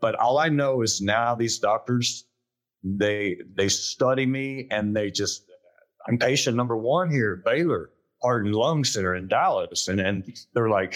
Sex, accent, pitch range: male, American, 115-155 Hz